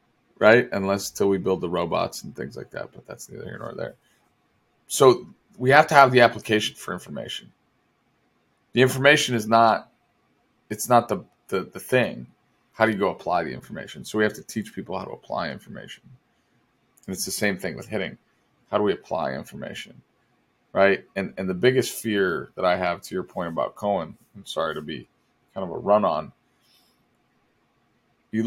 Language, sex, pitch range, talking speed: English, male, 100-120 Hz, 190 wpm